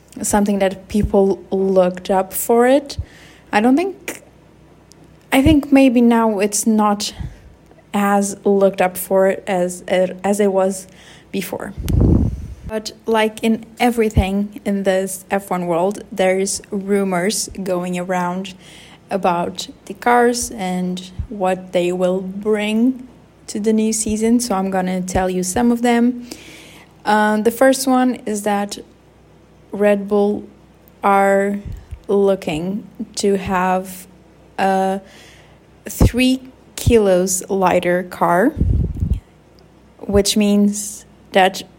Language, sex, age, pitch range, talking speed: English, female, 20-39, 190-225 Hz, 110 wpm